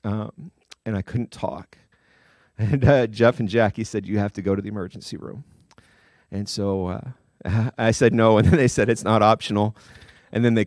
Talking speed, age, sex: 195 wpm, 40-59, male